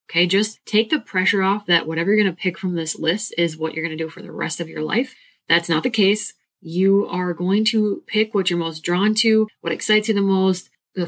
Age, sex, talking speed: 20-39, female, 255 wpm